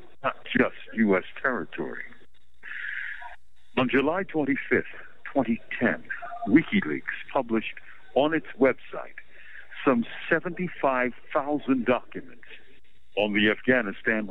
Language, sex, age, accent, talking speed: English, male, 60-79, American, 75 wpm